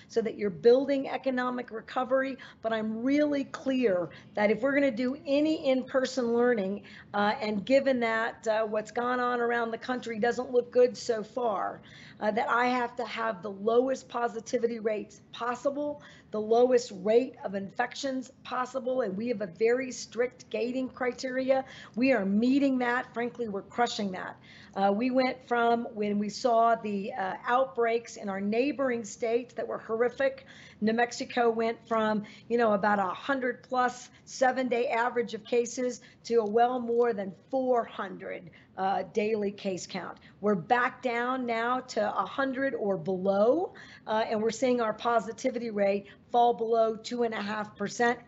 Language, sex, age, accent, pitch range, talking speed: English, female, 50-69, American, 215-250 Hz, 160 wpm